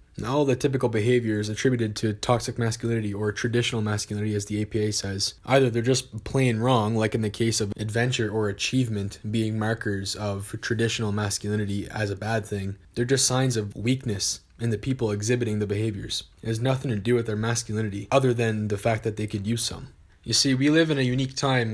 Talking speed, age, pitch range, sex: 205 wpm, 20-39, 105-125 Hz, male